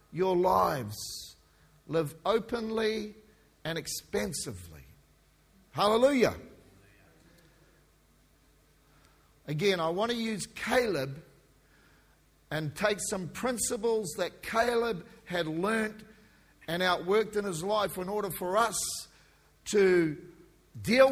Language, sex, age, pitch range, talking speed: English, male, 50-69, 160-225 Hz, 90 wpm